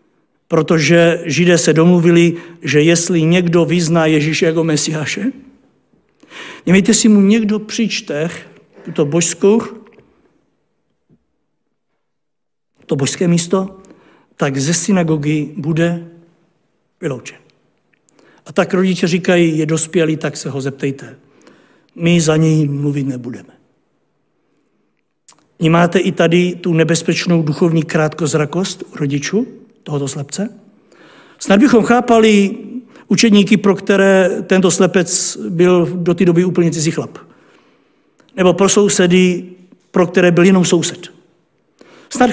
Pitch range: 160-195 Hz